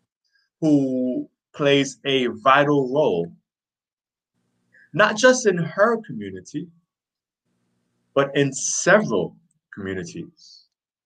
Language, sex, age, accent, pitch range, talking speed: English, male, 20-39, American, 120-160 Hz, 75 wpm